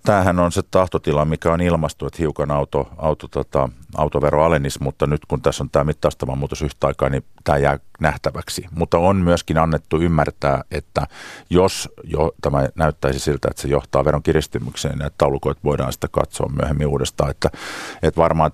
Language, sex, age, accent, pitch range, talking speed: Finnish, male, 50-69, native, 70-80 Hz, 170 wpm